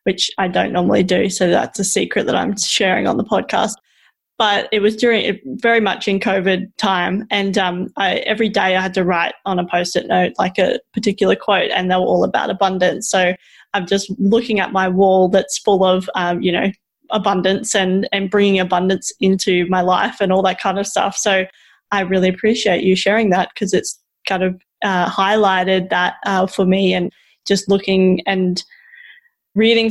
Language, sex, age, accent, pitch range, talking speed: English, female, 20-39, Australian, 185-210 Hz, 190 wpm